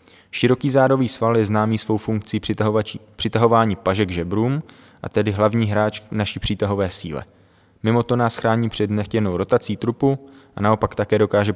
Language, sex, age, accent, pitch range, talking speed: Czech, male, 20-39, native, 100-115 Hz, 150 wpm